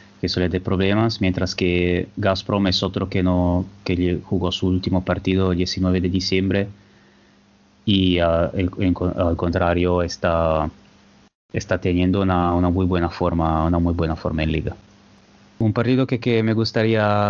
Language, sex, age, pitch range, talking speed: Spanish, male, 20-39, 90-105 Hz, 160 wpm